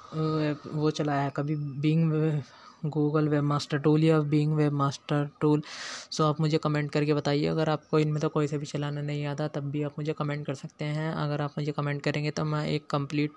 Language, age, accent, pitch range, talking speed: Hindi, 20-39, native, 145-155 Hz, 215 wpm